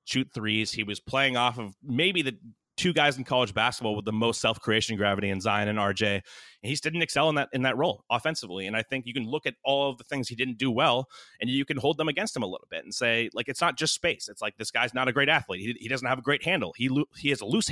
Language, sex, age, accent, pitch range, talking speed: English, male, 30-49, American, 115-135 Hz, 295 wpm